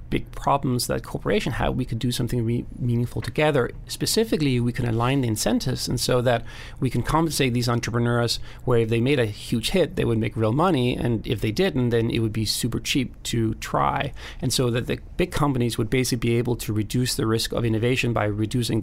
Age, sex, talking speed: 30-49, male, 215 wpm